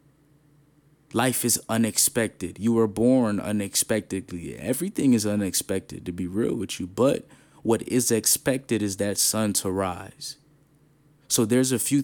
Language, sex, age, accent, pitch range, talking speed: English, male, 20-39, American, 105-135 Hz, 140 wpm